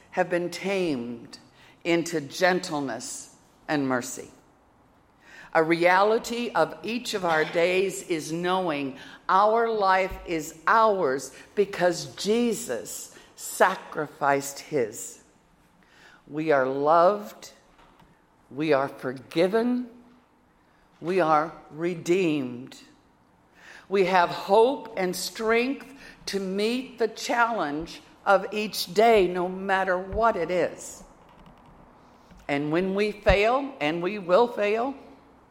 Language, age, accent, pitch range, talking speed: English, 60-79, American, 155-215 Hz, 100 wpm